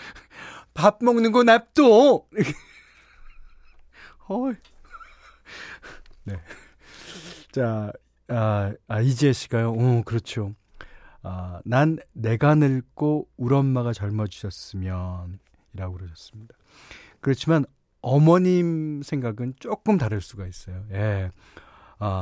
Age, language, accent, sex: 40-59, Korean, native, male